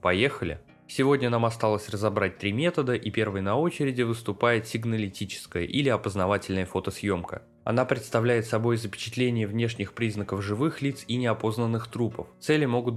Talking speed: 135 wpm